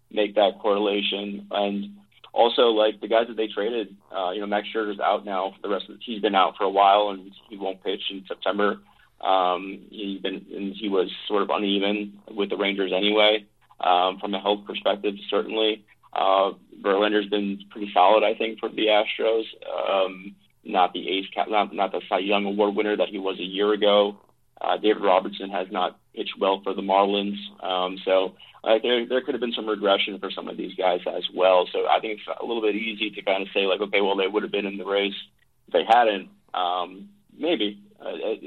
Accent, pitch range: American, 95-105 Hz